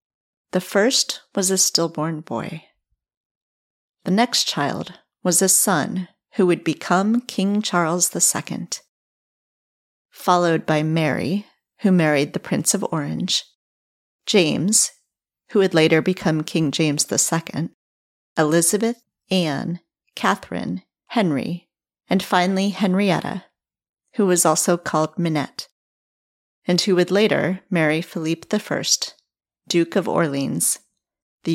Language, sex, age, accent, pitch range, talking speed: English, female, 40-59, American, 160-195 Hz, 110 wpm